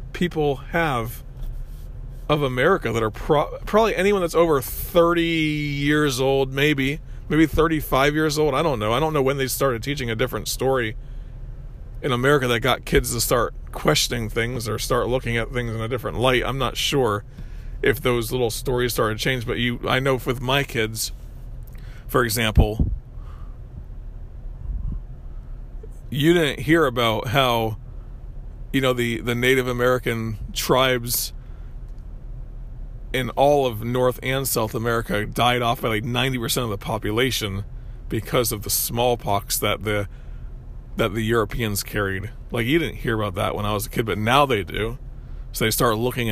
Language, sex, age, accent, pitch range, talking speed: English, male, 40-59, American, 110-135 Hz, 160 wpm